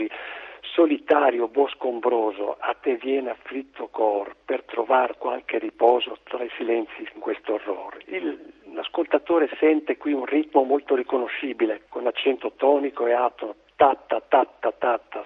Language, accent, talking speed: Italian, native, 125 wpm